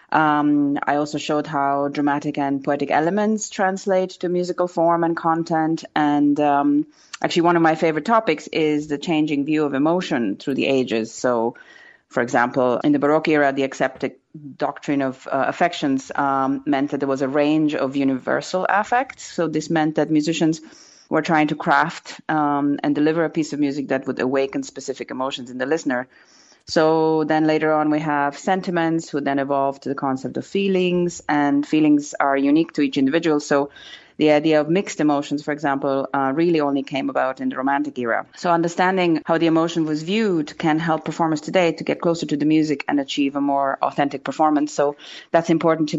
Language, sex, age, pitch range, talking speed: English, female, 30-49, 140-165 Hz, 190 wpm